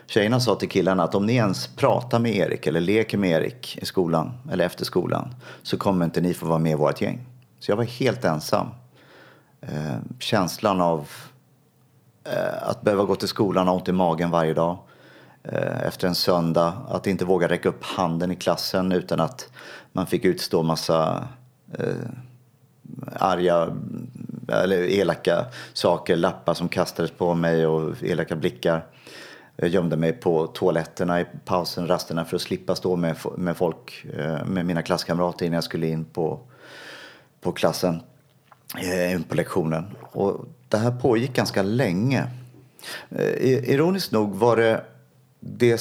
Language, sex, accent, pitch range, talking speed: Swedish, male, native, 85-120 Hz, 150 wpm